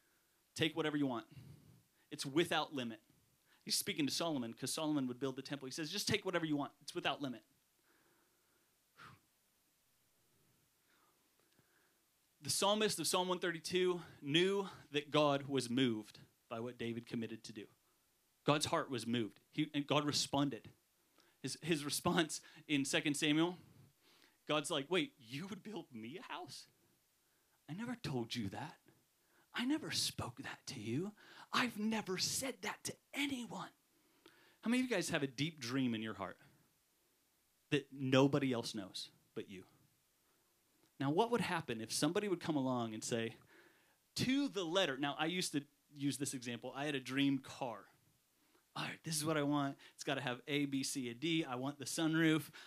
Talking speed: 165 wpm